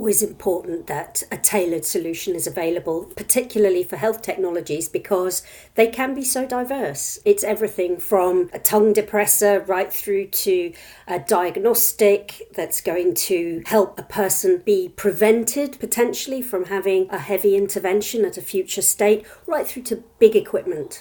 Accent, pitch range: British, 190-250 Hz